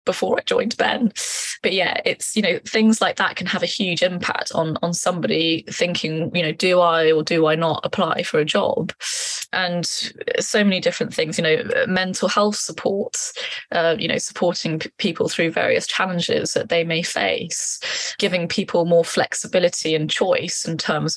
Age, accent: 20-39, British